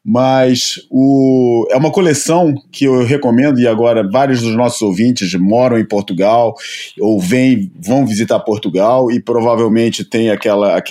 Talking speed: 140 wpm